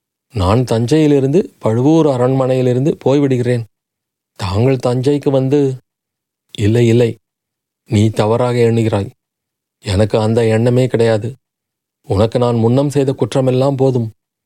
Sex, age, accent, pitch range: male, 30-49, native, 115-145 Hz